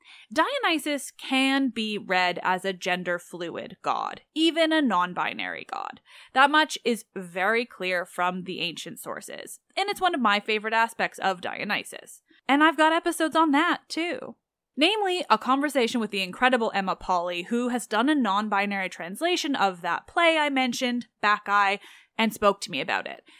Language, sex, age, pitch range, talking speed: English, female, 10-29, 195-285 Hz, 160 wpm